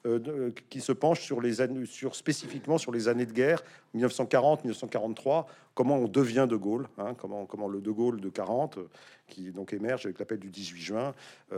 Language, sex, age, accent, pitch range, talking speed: French, male, 50-69, French, 100-130 Hz, 190 wpm